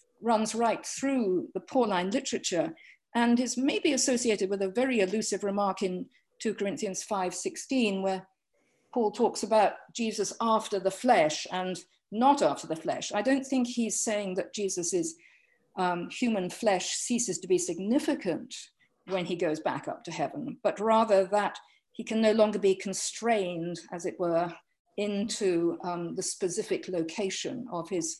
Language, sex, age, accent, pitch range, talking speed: English, female, 50-69, British, 190-250 Hz, 150 wpm